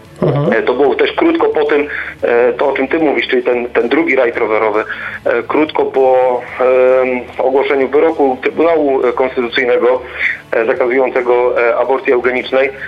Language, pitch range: Polish, 125-170 Hz